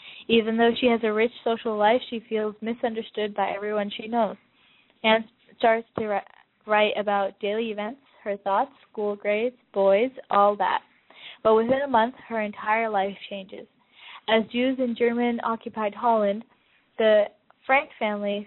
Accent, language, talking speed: American, English, 150 wpm